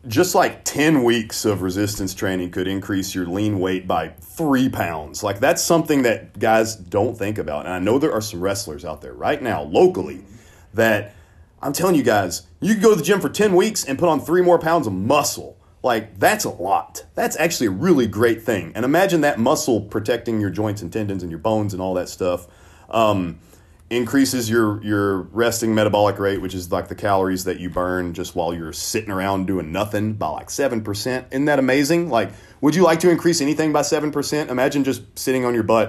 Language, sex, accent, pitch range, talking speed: English, male, American, 90-125 Hz, 210 wpm